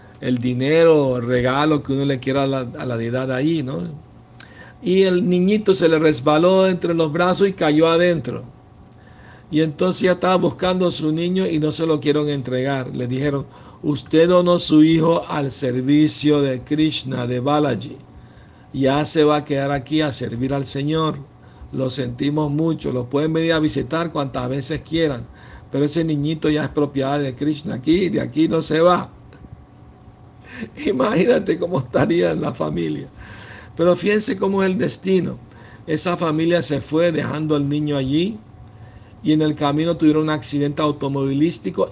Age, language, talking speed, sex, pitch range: 60-79, Spanish, 165 wpm, male, 130-165 Hz